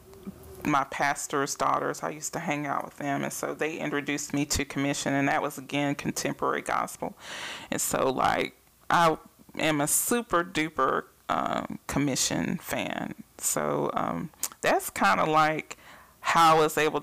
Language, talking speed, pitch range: English, 155 wpm, 145-180 Hz